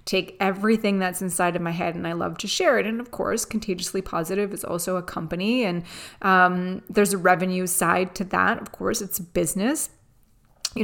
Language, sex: English, female